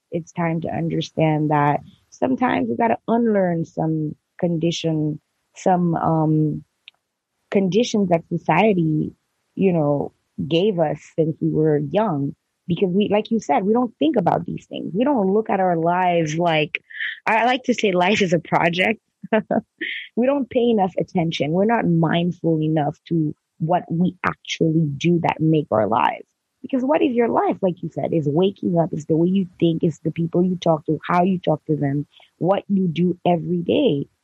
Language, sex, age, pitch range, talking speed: English, female, 20-39, 160-205 Hz, 175 wpm